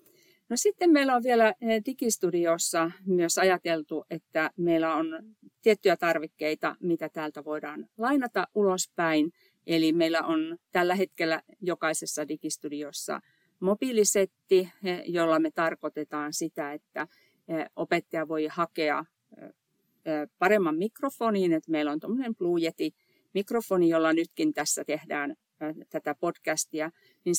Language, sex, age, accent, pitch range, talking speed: Finnish, female, 50-69, native, 155-195 Hz, 100 wpm